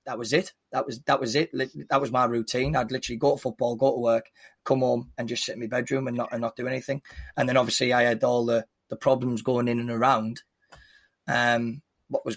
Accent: British